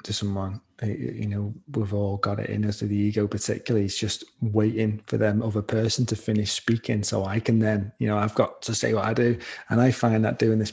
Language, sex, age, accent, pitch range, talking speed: English, male, 30-49, British, 110-120 Hz, 245 wpm